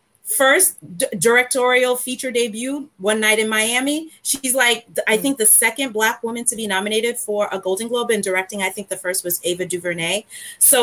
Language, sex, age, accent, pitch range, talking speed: English, female, 30-49, American, 180-225 Hz, 185 wpm